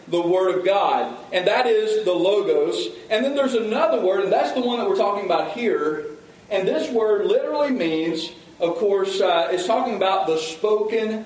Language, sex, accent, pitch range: English, male, American, 180-295 Hz